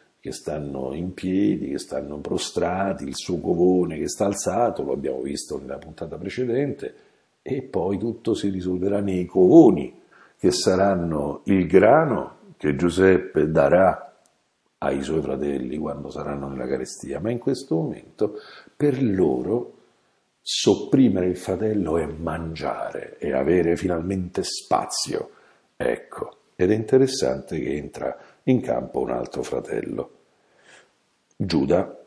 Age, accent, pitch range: 50-69, native, 80-130 Hz